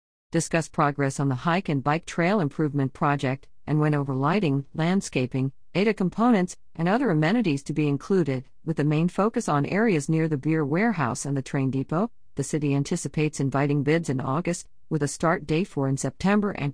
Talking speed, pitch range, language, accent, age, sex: 185 wpm, 140-190 Hz, English, American, 50-69, female